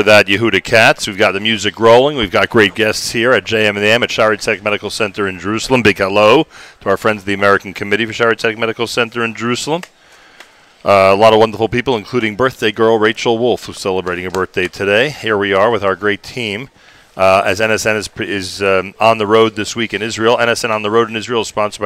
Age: 40-59